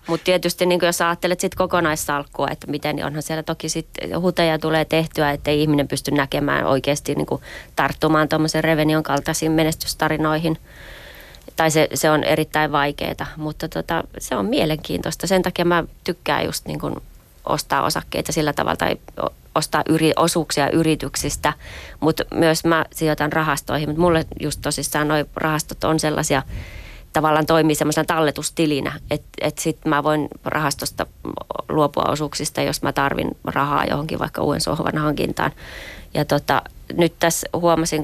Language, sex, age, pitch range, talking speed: Finnish, female, 20-39, 145-160 Hz, 145 wpm